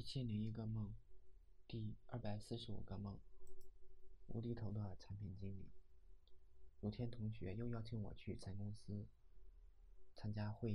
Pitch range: 75-110 Hz